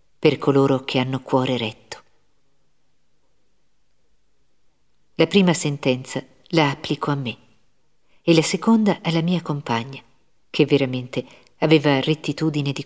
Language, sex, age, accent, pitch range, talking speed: Italian, female, 50-69, native, 135-170 Hz, 110 wpm